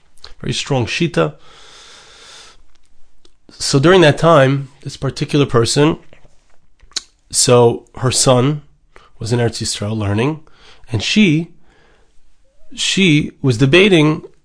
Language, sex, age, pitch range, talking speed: English, male, 30-49, 120-155 Hz, 95 wpm